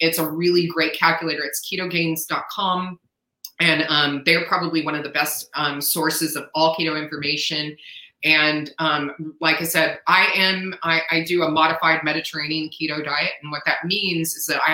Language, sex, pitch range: English, female, 145-165 Hz